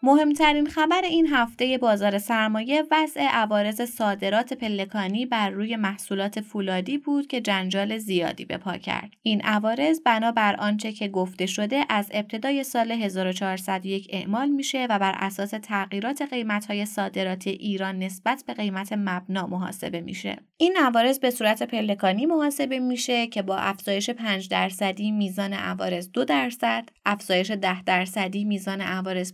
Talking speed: 145 wpm